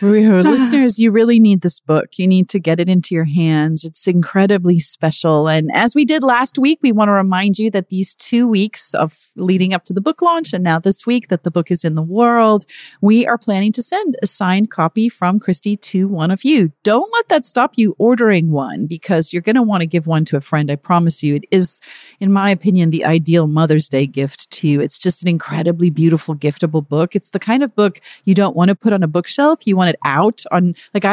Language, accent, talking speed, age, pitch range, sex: English, American, 235 wpm, 40-59, 160-210 Hz, female